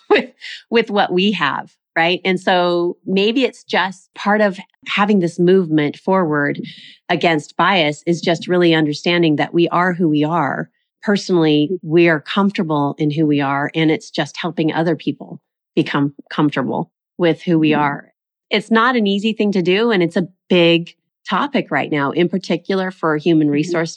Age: 30-49